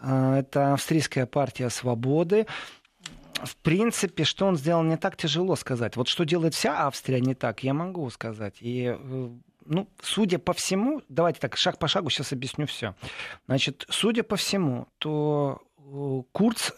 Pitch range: 130-175 Hz